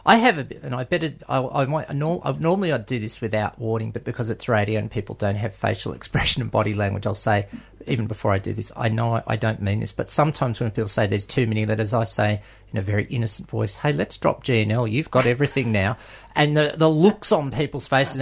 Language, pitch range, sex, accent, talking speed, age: English, 115-150 Hz, male, Australian, 240 wpm, 40-59